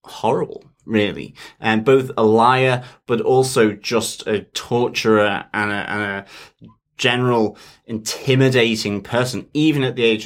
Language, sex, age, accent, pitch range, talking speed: English, male, 20-39, British, 105-120 Hz, 125 wpm